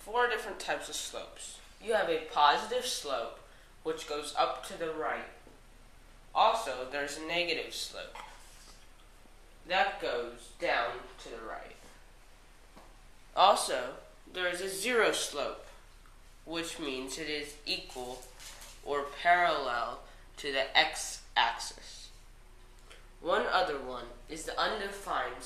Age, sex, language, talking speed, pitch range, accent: 10-29, female, English, 115 wpm, 135-195 Hz, American